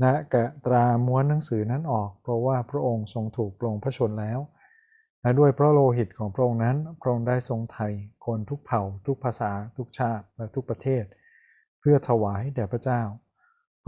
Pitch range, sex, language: 115-130 Hz, male, Thai